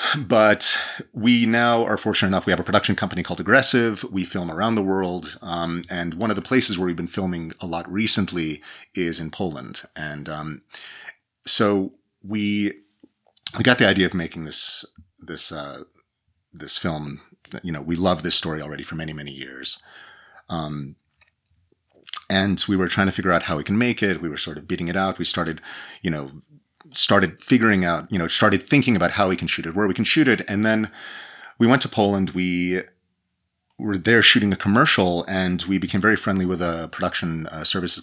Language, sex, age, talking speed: English, male, 30-49, 190 wpm